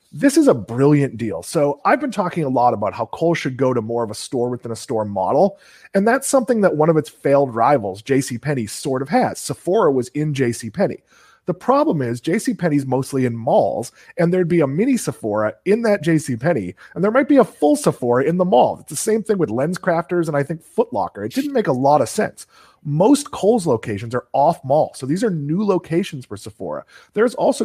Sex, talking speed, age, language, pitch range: male, 220 wpm, 30-49, English, 130-180 Hz